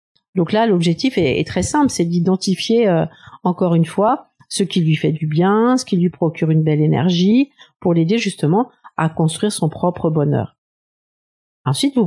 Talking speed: 180 wpm